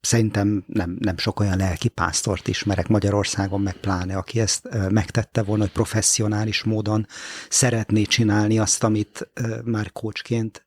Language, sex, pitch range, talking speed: Hungarian, male, 105-130 Hz, 135 wpm